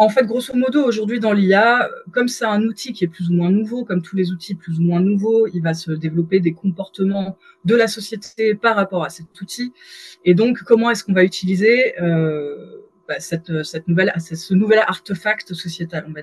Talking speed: 210 wpm